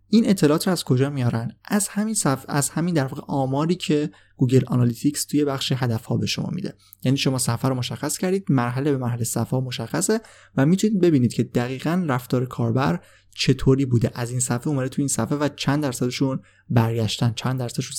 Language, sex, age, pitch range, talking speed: Persian, male, 20-39, 115-145 Hz, 180 wpm